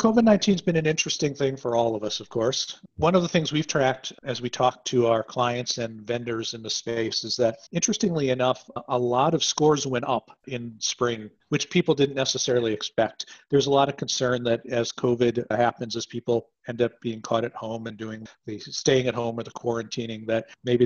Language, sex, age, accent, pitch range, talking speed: English, male, 50-69, American, 120-145 Hz, 215 wpm